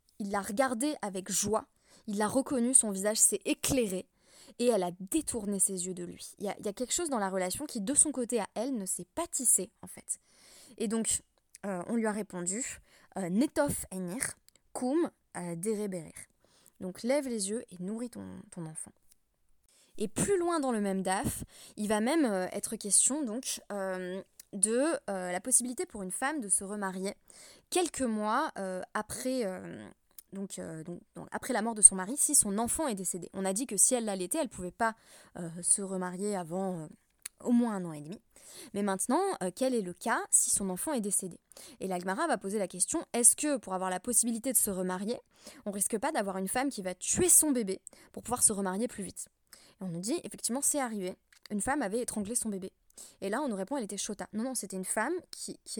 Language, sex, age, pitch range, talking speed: French, female, 20-39, 190-255 Hz, 215 wpm